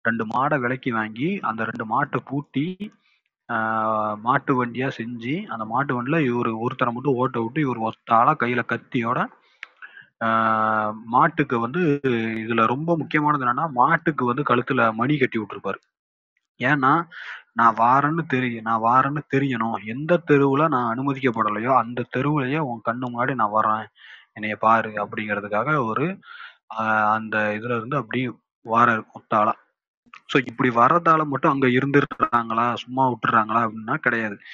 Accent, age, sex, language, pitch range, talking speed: native, 30-49, male, Tamil, 115-135 Hz, 130 wpm